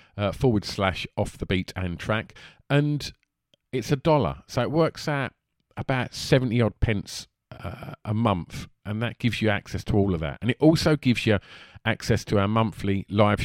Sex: male